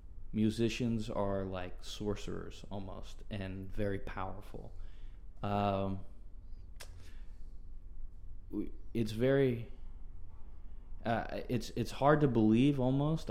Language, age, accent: English, 20-39, American